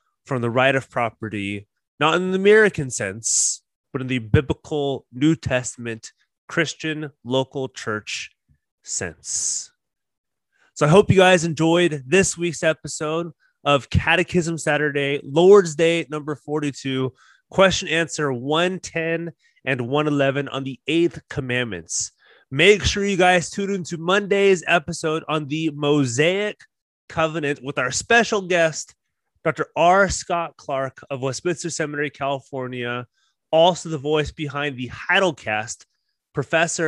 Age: 30-49